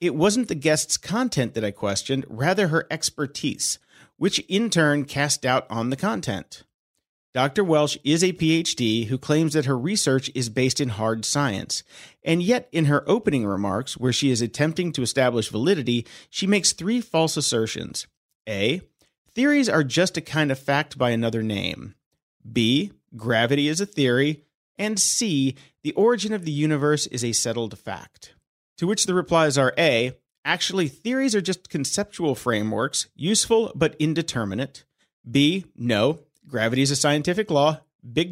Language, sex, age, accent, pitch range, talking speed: English, male, 40-59, American, 125-170 Hz, 160 wpm